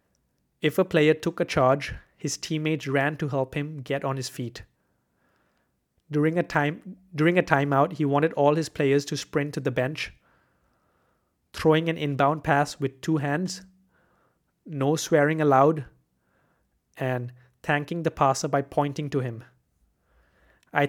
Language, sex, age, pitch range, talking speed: English, male, 30-49, 140-155 Hz, 145 wpm